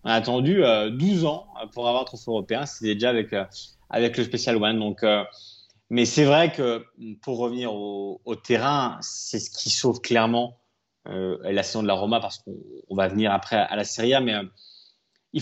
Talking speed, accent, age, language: 205 wpm, French, 20-39, French